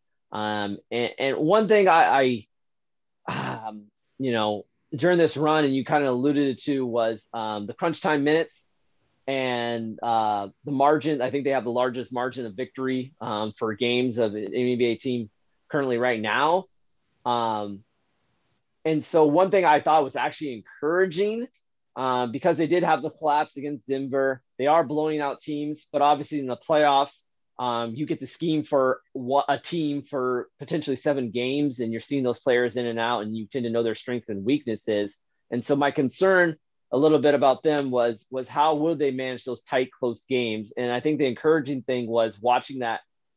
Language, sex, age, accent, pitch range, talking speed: English, male, 20-39, American, 120-150 Hz, 185 wpm